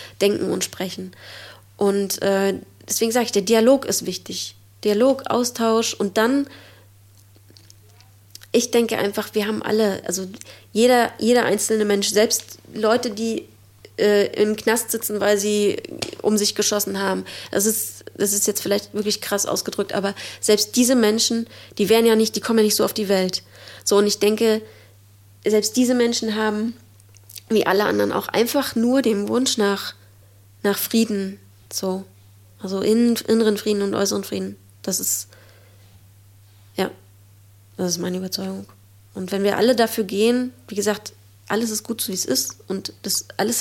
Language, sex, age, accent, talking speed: German, female, 20-39, German, 160 wpm